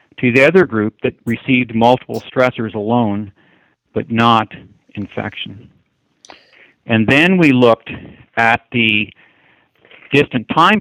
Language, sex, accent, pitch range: English, male, American, 110-135 Hz